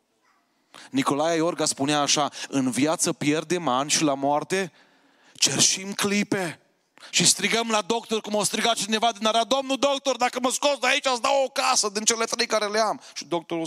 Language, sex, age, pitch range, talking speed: Romanian, male, 30-49, 145-235 Hz, 185 wpm